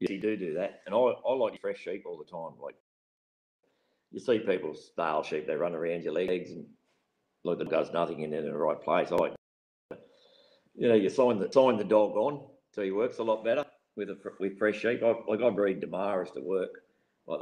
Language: English